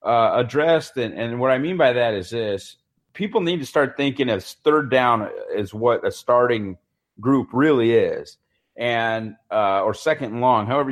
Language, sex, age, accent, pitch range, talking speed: English, male, 30-49, American, 110-135 Hz, 180 wpm